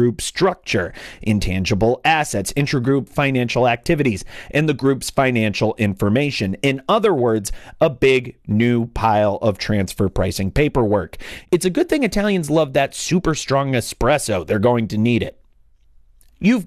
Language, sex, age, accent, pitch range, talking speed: English, male, 40-59, American, 110-155 Hz, 135 wpm